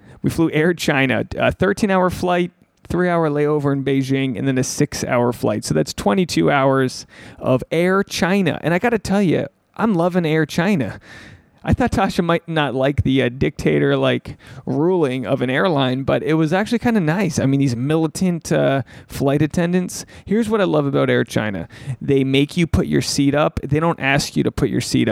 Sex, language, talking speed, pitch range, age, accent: male, English, 195 wpm, 135-175 Hz, 30-49, American